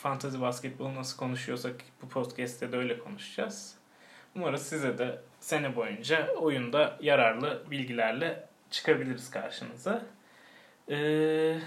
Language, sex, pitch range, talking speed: Turkish, male, 130-160 Hz, 105 wpm